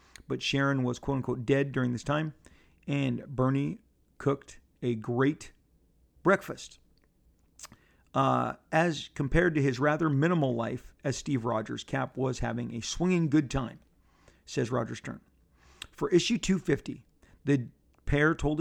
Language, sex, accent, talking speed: English, male, American, 135 wpm